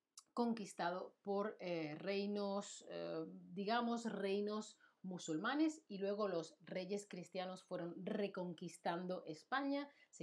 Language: Spanish